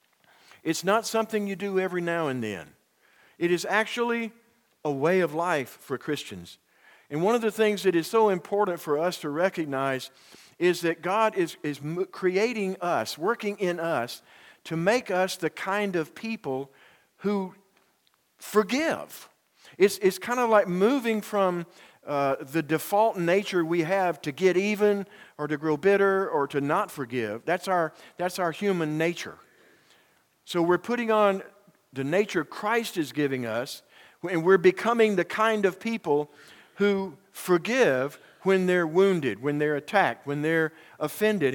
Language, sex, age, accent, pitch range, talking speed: English, male, 50-69, American, 160-205 Hz, 155 wpm